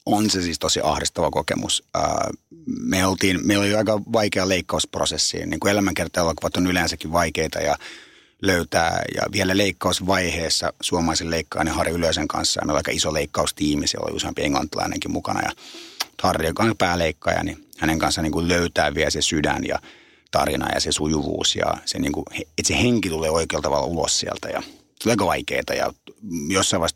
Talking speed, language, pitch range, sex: 160 wpm, Finnish, 85-105 Hz, male